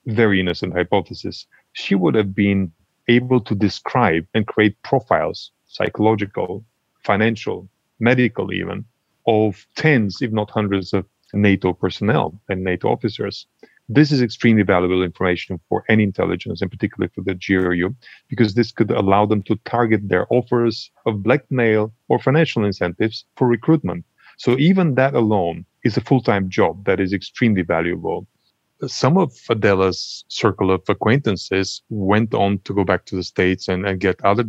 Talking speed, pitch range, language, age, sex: 150 wpm, 95-115 Hz, English, 30-49, male